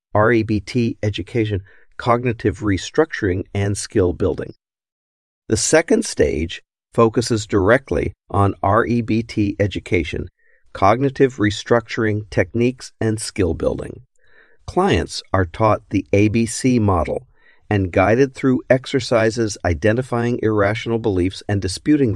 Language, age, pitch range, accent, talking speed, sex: English, 50-69, 95-120 Hz, American, 95 wpm, male